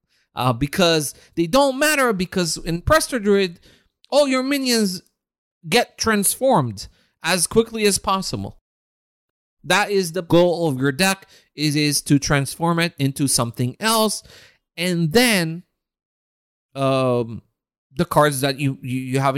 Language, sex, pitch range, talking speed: English, male, 125-190 Hz, 135 wpm